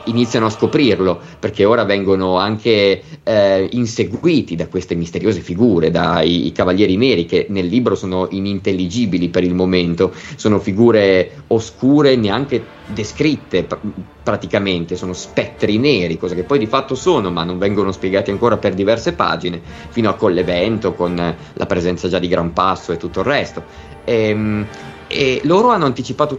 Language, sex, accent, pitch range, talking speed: Italian, male, native, 90-125 Hz, 155 wpm